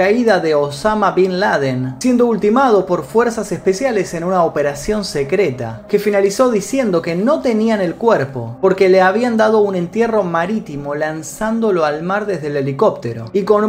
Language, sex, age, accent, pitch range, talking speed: Spanish, male, 30-49, Argentinian, 150-215 Hz, 160 wpm